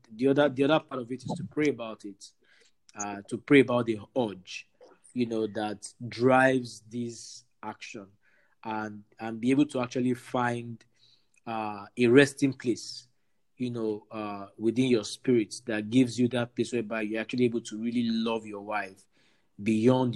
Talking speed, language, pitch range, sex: 165 wpm, English, 110-130 Hz, male